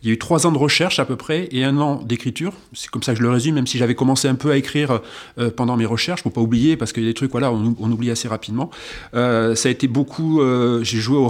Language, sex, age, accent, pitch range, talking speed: French, male, 40-59, French, 115-145 Hz, 310 wpm